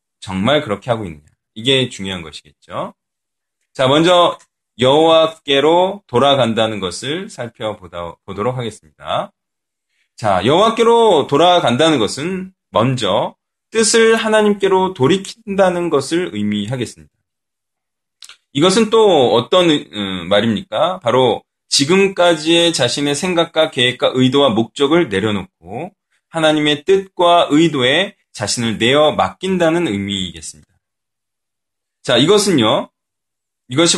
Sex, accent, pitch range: male, native, 110-180 Hz